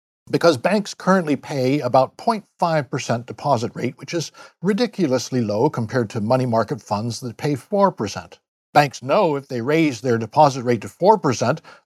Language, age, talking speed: English, 60-79, 150 wpm